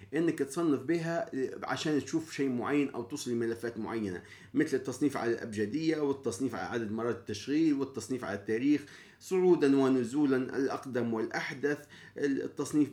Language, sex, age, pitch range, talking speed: Arabic, male, 30-49, 115-145 Hz, 130 wpm